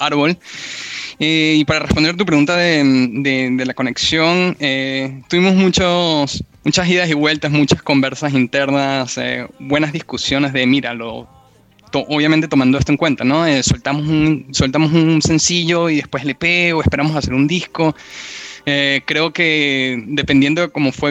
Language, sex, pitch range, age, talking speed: Spanish, male, 130-155 Hz, 10-29, 160 wpm